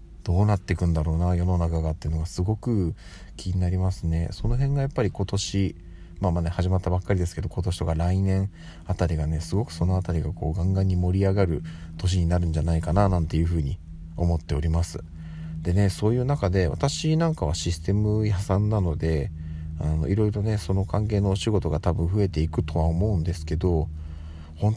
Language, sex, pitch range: Japanese, male, 80-100 Hz